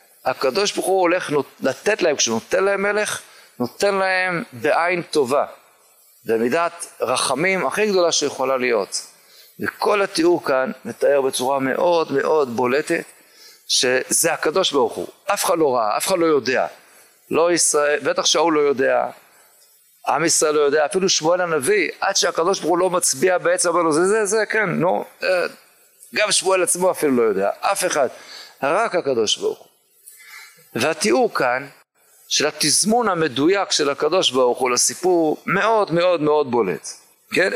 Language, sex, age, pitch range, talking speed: Hebrew, male, 50-69, 150-225 Hz, 150 wpm